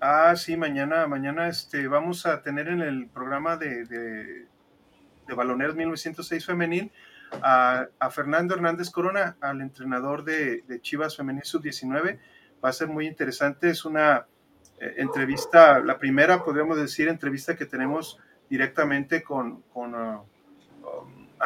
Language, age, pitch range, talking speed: Spanish, 30-49, 130-165 Hz, 135 wpm